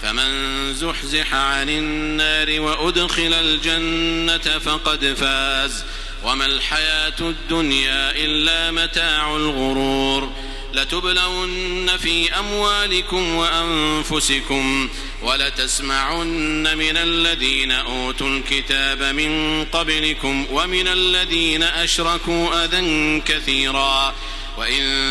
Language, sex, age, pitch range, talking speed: Arabic, male, 50-69, 135-170 Hz, 75 wpm